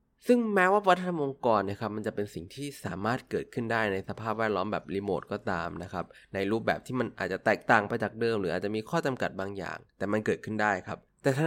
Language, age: Thai, 20-39